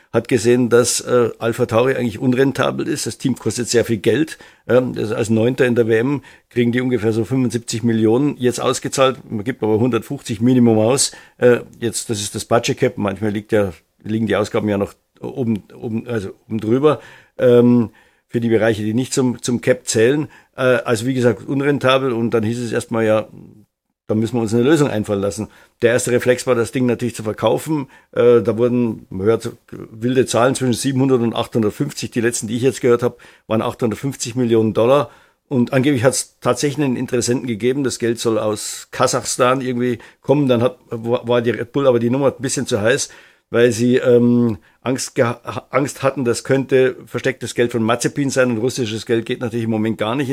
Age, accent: 50-69, German